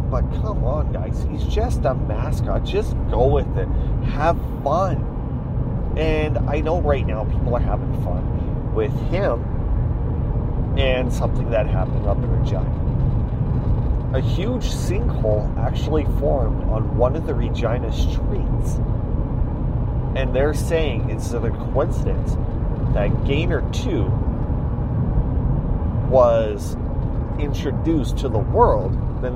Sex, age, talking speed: male, 30-49, 120 wpm